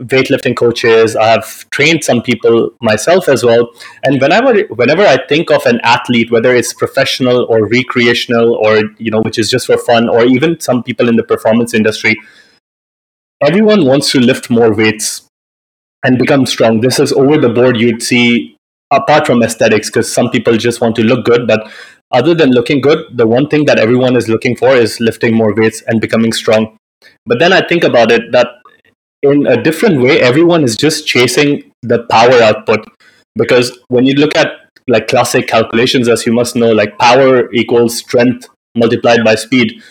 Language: English